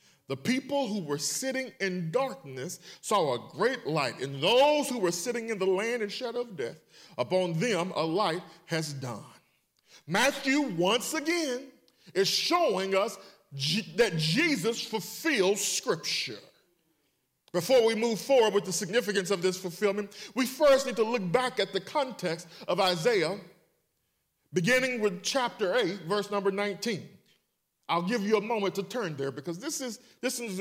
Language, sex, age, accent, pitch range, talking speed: English, male, 40-59, American, 180-245 Hz, 155 wpm